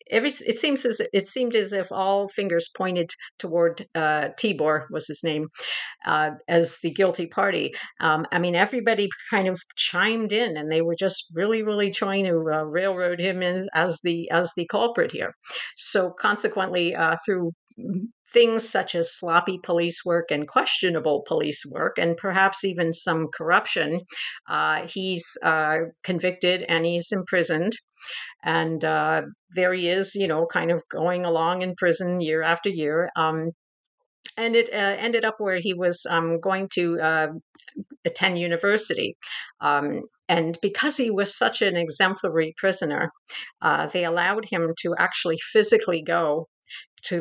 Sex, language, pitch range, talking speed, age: female, English, 165-195 Hz, 155 wpm, 50-69